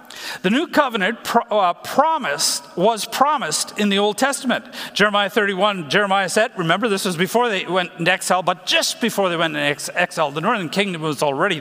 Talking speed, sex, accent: 180 wpm, male, American